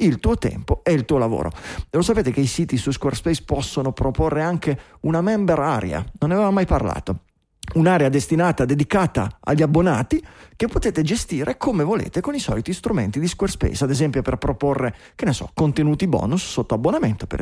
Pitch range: 130-175 Hz